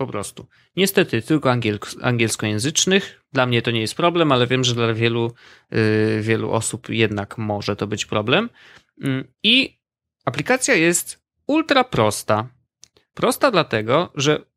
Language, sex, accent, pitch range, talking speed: Polish, male, native, 110-145 Hz, 130 wpm